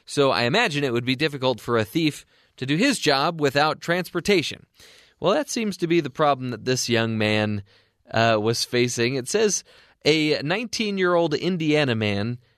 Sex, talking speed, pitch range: male, 170 wpm, 115-165 Hz